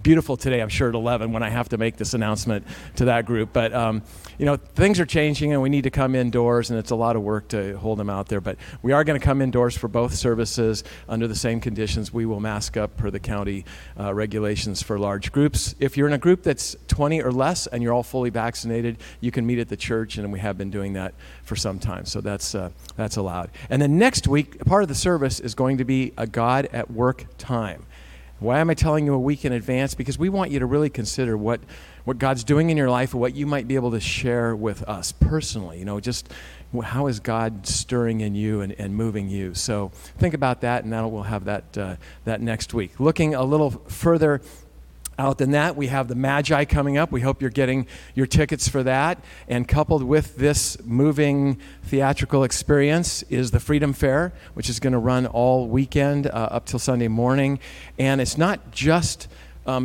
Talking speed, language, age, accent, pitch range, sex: 225 wpm, English, 50-69, American, 105-135 Hz, male